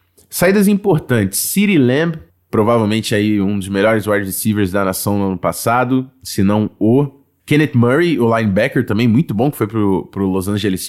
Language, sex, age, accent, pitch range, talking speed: Portuguese, male, 20-39, Brazilian, 105-135 Hz, 170 wpm